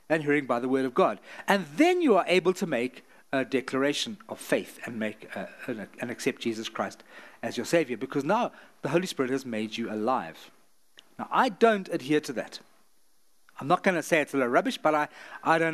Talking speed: 215 wpm